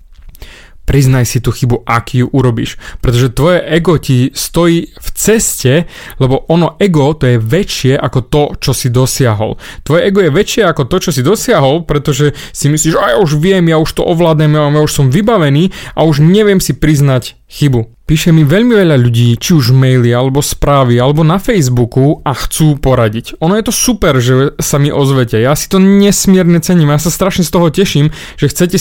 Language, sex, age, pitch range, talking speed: Slovak, male, 20-39, 130-170 Hz, 190 wpm